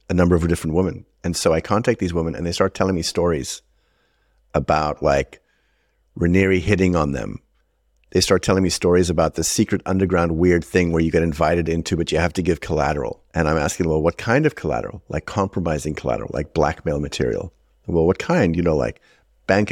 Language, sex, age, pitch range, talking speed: English, male, 50-69, 80-100 Hz, 200 wpm